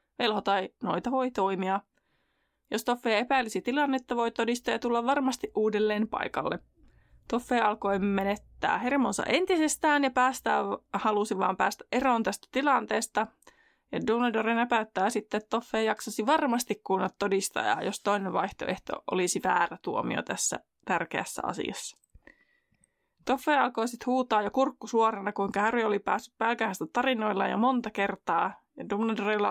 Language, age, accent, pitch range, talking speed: Finnish, 20-39, native, 205-255 Hz, 130 wpm